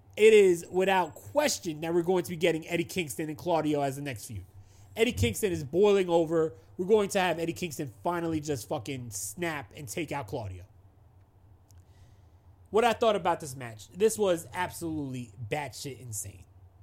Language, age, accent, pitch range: English, 30-49, American, 125-190 Hz